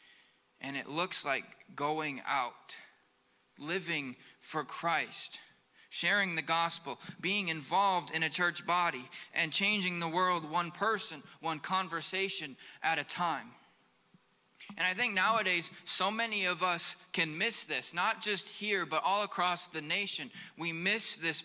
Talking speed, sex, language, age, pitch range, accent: 145 wpm, male, English, 20-39, 170-205 Hz, American